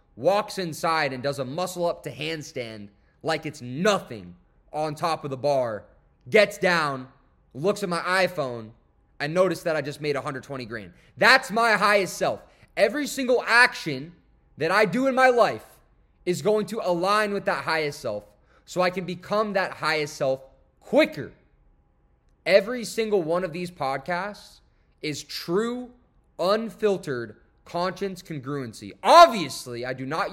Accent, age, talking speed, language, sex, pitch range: American, 20-39, 150 wpm, English, male, 145-210 Hz